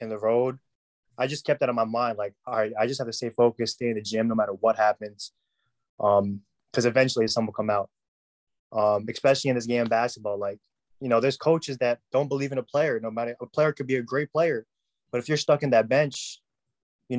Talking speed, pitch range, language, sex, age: 235 wpm, 110-125 Hz, English, male, 20-39